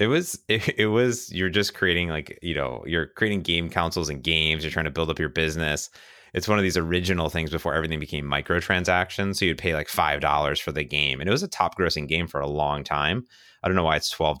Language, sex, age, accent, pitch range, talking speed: English, male, 30-49, American, 80-100 Hz, 250 wpm